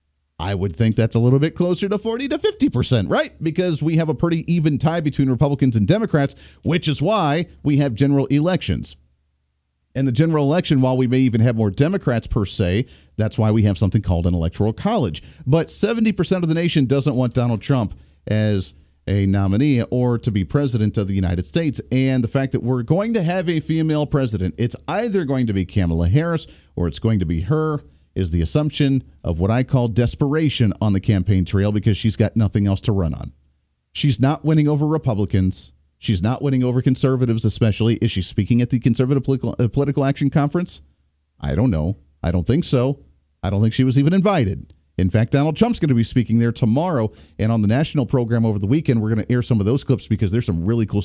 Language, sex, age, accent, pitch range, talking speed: English, male, 40-59, American, 100-145 Hz, 215 wpm